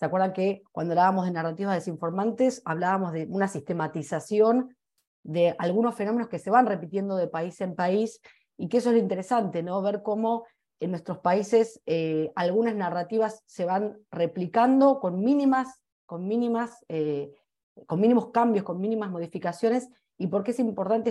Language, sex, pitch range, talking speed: Spanish, female, 170-220 Hz, 160 wpm